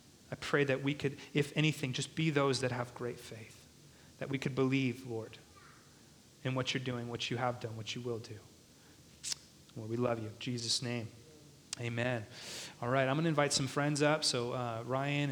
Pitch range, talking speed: 130-160 Hz, 200 wpm